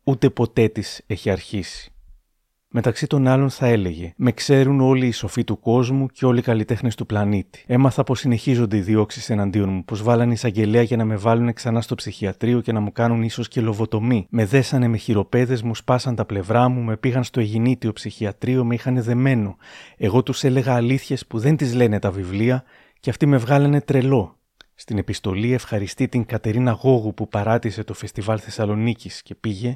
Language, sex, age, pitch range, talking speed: Greek, male, 30-49, 110-130 Hz, 185 wpm